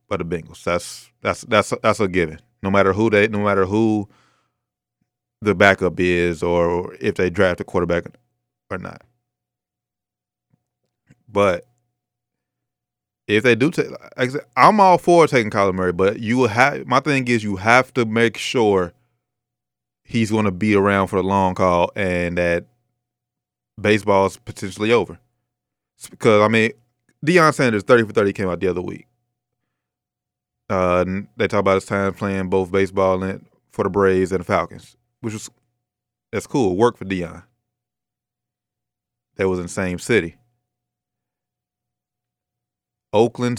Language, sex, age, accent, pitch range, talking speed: English, male, 20-39, American, 95-120 Hz, 155 wpm